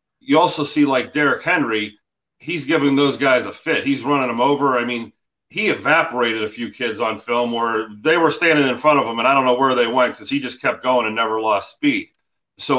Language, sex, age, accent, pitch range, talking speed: English, male, 30-49, American, 120-150 Hz, 235 wpm